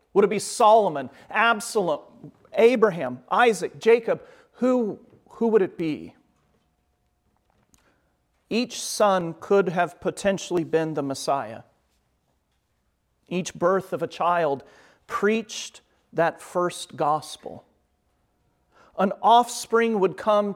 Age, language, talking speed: 40-59, English, 100 wpm